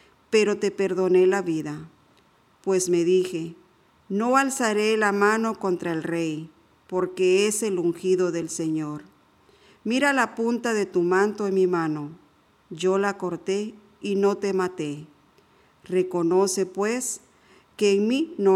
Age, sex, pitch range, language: 50-69, female, 175-210 Hz, Spanish